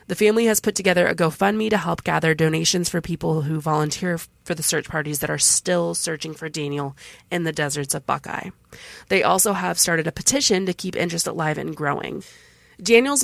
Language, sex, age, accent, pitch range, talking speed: English, female, 20-39, American, 160-190 Hz, 200 wpm